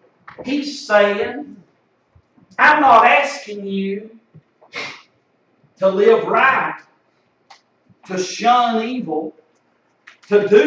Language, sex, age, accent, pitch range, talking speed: English, male, 50-69, American, 200-295 Hz, 80 wpm